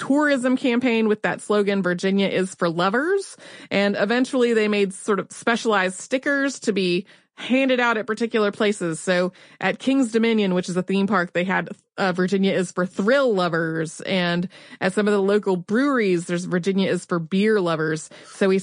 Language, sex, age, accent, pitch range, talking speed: English, female, 30-49, American, 180-230 Hz, 180 wpm